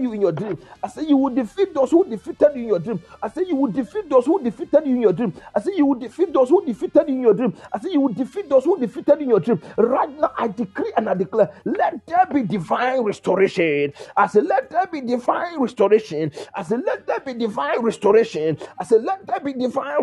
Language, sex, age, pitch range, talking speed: English, male, 40-59, 200-320 Hz, 250 wpm